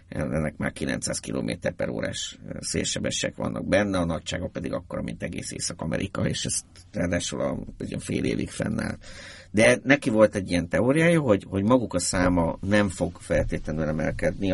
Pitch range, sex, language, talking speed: 85-110 Hz, male, Hungarian, 155 wpm